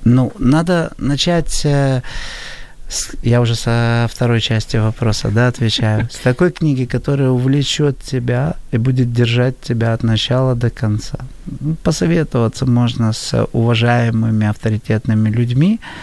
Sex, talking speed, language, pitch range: male, 115 wpm, Ukrainian, 115-140 Hz